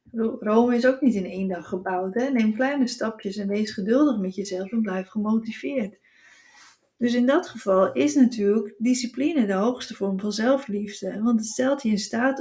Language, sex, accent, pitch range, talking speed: Dutch, female, Dutch, 195-245 Hz, 185 wpm